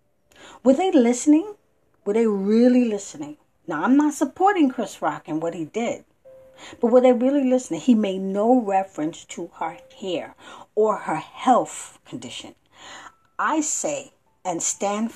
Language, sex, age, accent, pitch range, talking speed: English, female, 40-59, American, 175-260 Hz, 145 wpm